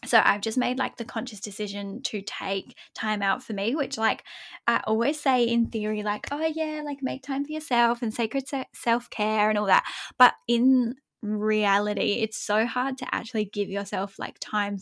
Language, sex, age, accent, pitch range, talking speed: English, female, 10-29, Australian, 200-230 Hz, 195 wpm